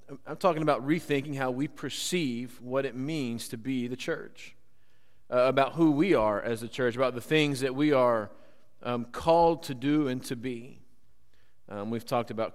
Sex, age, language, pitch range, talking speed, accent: male, 40-59, English, 120-145 Hz, 185 wpm, American